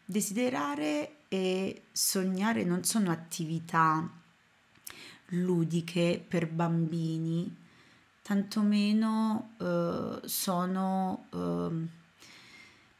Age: 30-49